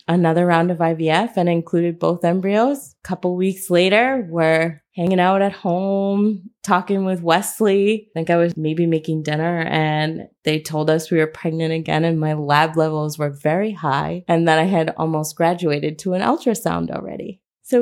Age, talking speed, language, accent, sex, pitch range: 20-39, 180 wpm, English, American, female, 165-210 Hz